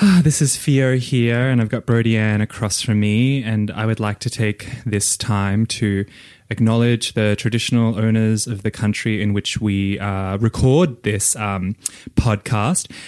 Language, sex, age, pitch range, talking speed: English, male, 20-39, 105-120 Hz, 165 wpm